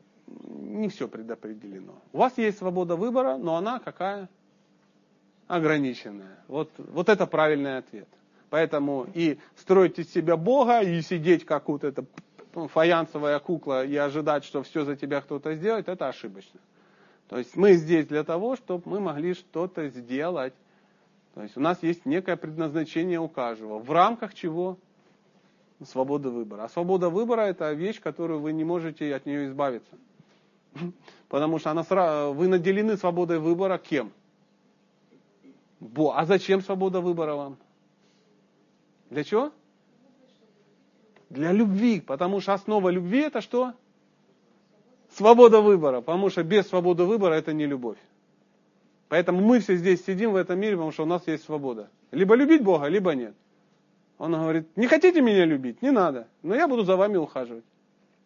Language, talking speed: Russian, 145 wpm